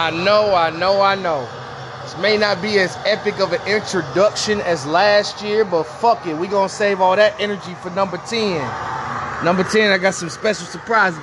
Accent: American